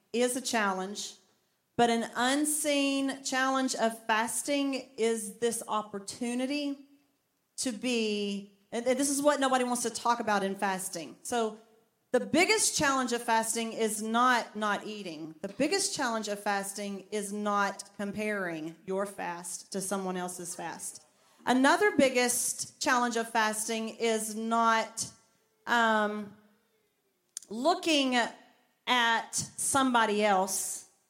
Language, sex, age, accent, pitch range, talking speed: English, female, 40-59, American, 200-260 Hz, 120 wpm